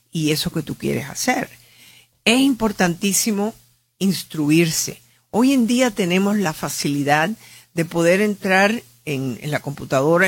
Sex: female